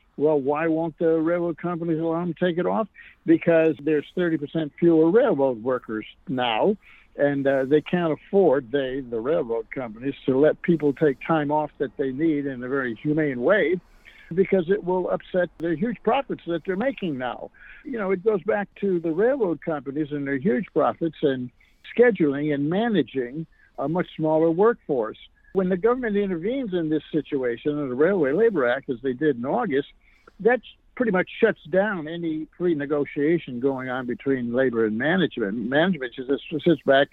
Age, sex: 60-79, male